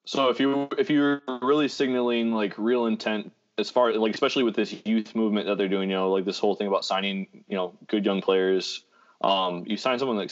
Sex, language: male, English